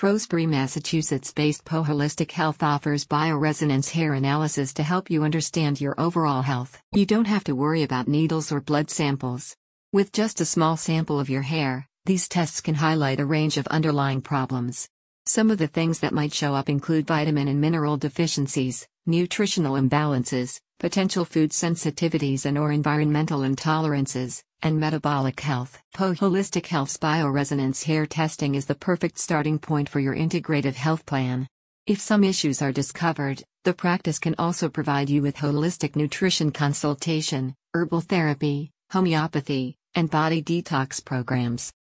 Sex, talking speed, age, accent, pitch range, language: female, 150 wpm, 50-69, American, 140-165 Hz, English